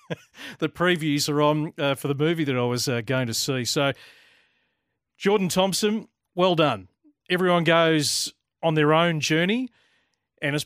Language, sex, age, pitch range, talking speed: English, male, 40-59, 130-160 Hz, 160 wpm